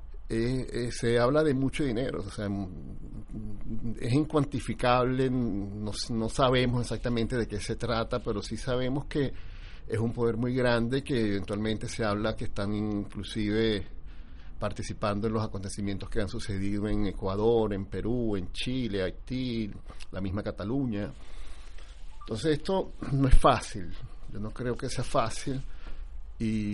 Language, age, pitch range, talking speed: Spanish, 50-69, 105-120 Hz, 145 wpm